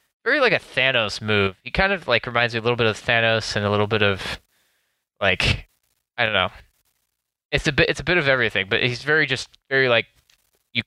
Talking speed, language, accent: 220 wpm, English, American